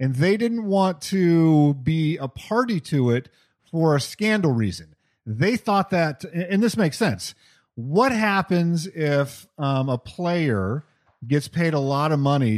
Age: 40-59